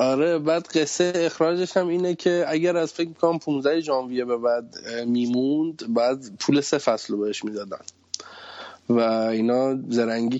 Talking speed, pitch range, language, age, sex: 145 wpm, 115-135 Hz, Persian, 20-39, male